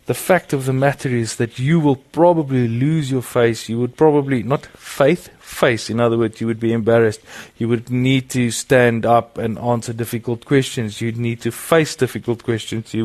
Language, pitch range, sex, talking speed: English, 110-130 Hz, male, 200 wpm